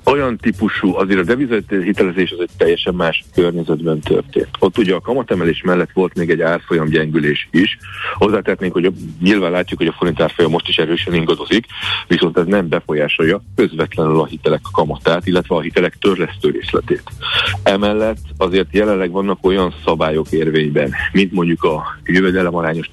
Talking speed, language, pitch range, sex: 150 wpm, Hungarian, 80-100 Hz, male